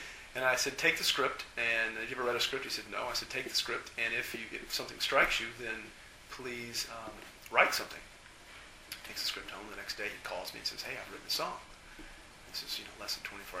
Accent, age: American, 40-59